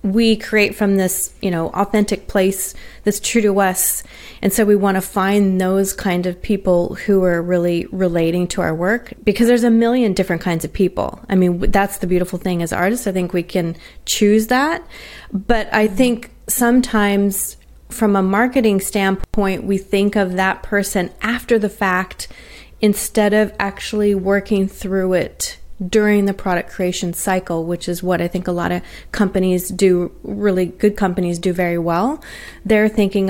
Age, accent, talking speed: 30-49, American, 175 wpm